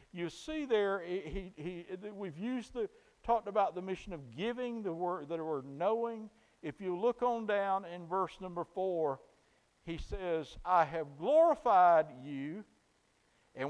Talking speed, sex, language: 155 wpm, male, English